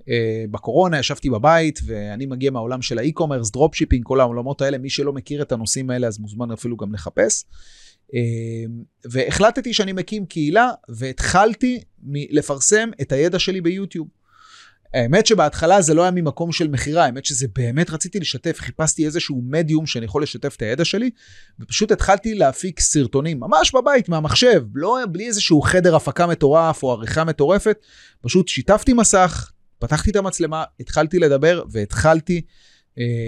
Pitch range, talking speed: 130-180 Hz, 145 wpm